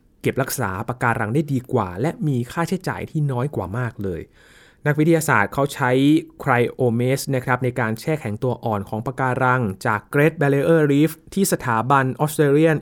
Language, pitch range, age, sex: Thai, 120-150 Hz, 20-39, male